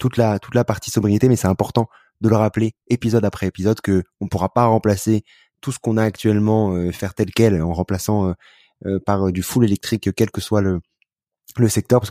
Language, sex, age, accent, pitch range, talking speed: French, male, 20-39, French, 95-110 Hz, 225 wpm